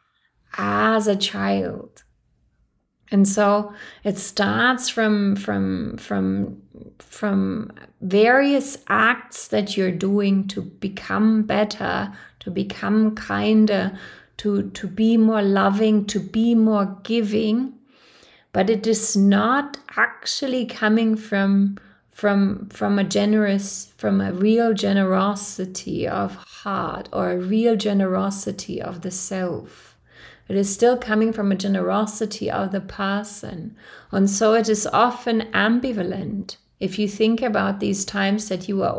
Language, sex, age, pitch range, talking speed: English, female, 30-49, 195-215 Hz, 125 wpm